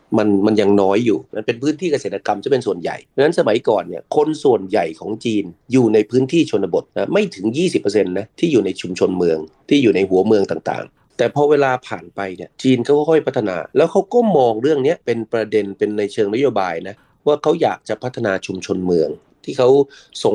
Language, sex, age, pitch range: Thai, male, 30-49, 105-140 Hz